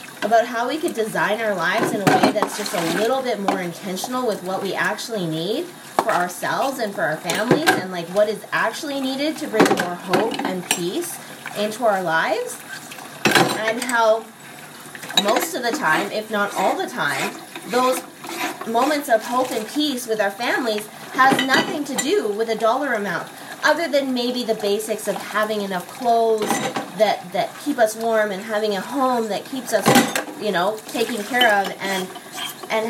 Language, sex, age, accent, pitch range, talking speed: English, female, 20-39, American, 210-270 Hz, 180 wpm